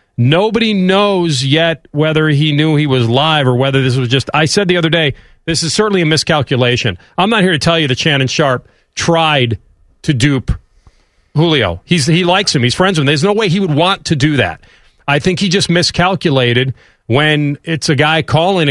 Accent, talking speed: American, 205 wpm